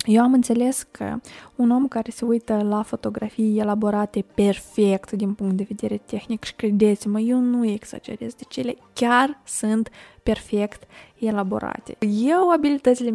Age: 20-39